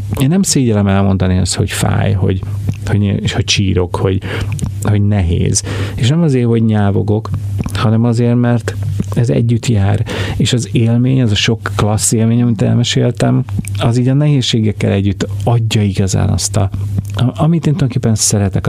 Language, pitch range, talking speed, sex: Hungarian, 100-120 Hz, 155 wpm, male